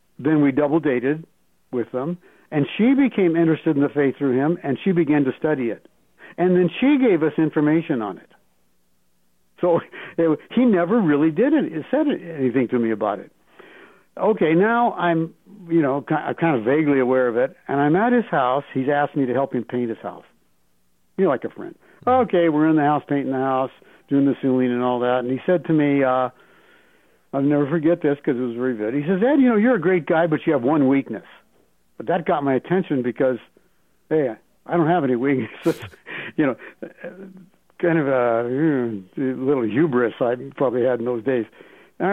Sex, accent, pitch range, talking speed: male, American, 125-170 Hz, 205 wpm